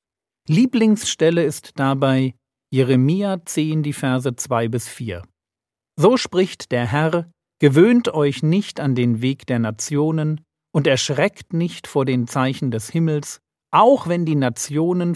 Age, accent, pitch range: 50-69, German, 120-165 Hz